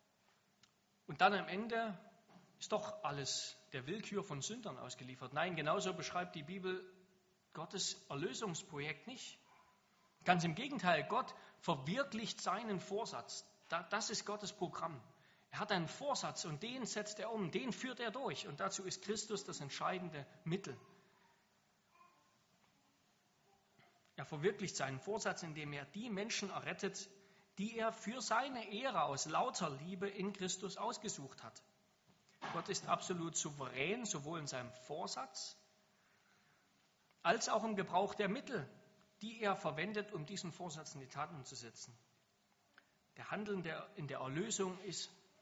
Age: 40-59